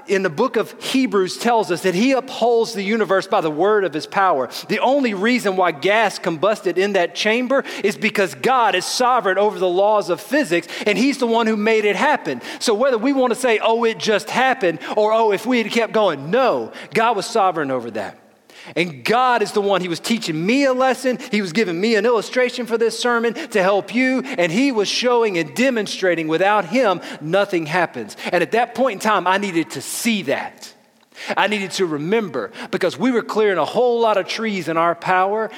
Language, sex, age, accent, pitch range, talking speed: English, male, 40-59, American, 175-230 Hz, 215 wpm